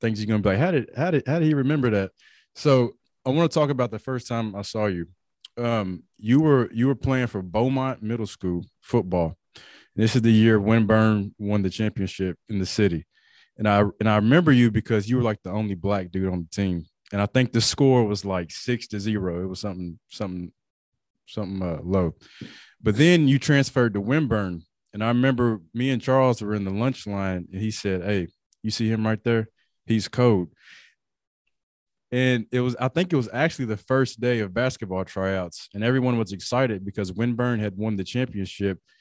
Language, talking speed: English, 205 wpm